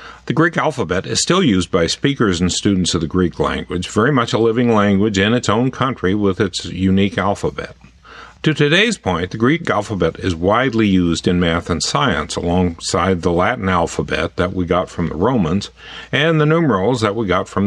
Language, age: English, 50-69